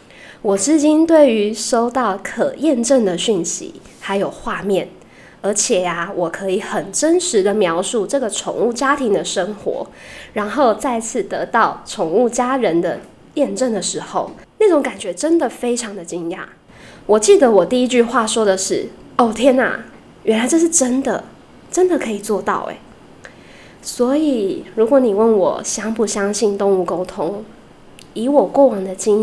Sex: female